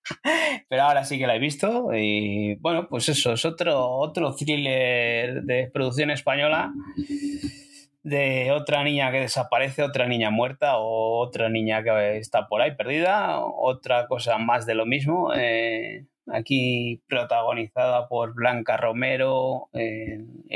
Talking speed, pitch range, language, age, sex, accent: 135 wpm, 110-145 Hz, Spanish, 30-49, male, Spanish